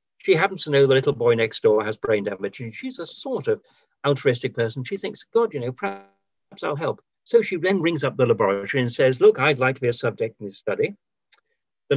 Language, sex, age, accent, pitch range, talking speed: English, male, 60-79, British, 125-195 Hz, 235 wpm